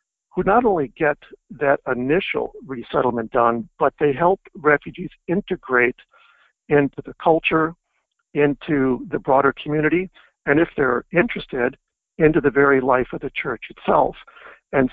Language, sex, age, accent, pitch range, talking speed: English, male, 60-79, American, 135-170 Hz, 135 wpm